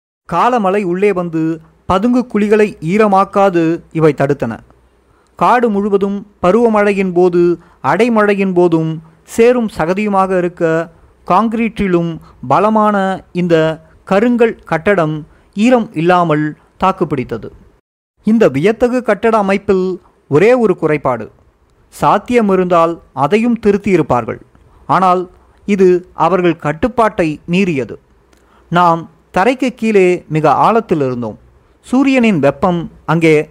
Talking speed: 85 wpm